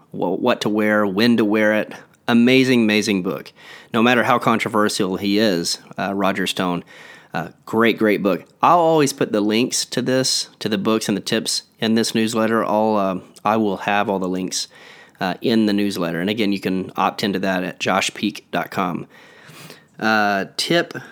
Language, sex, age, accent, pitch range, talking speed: English, male, 30-49, American, 95-115 Hz, 175 wpm